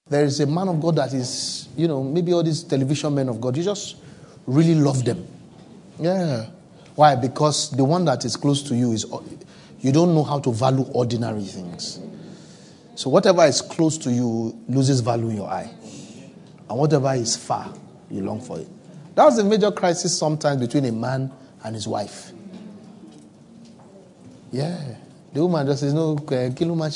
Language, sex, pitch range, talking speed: English, male, 130-180 Hz, 180 wpm